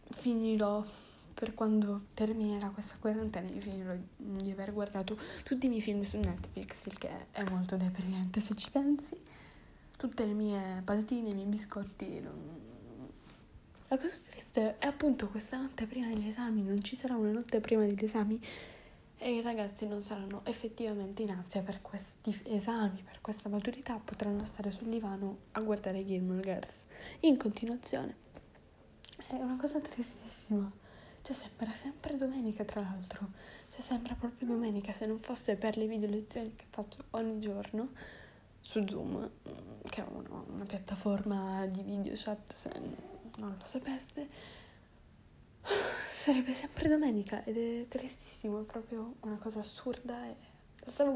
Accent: native